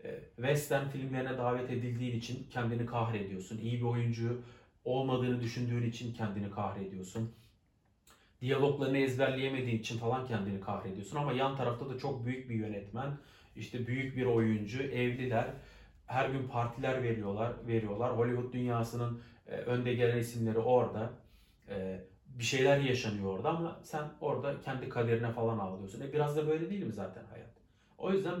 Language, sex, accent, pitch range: Turkish, male, native, 110-125 Hz